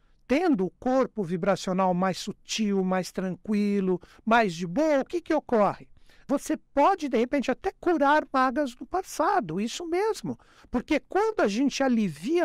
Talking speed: 150 wpm